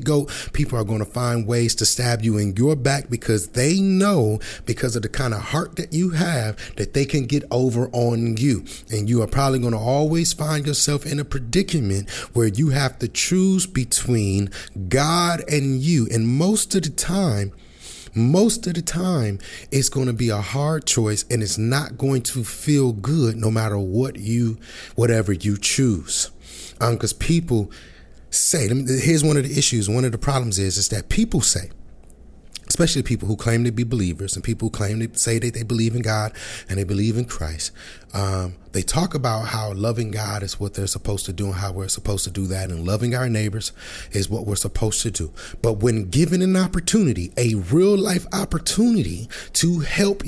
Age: 30-49